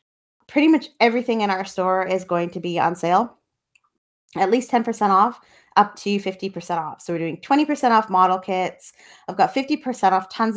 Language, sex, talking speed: English, female, 180 wpm